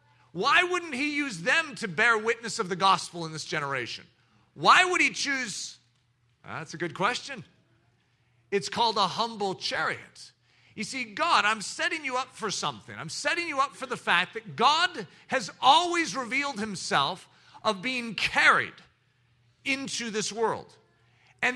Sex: male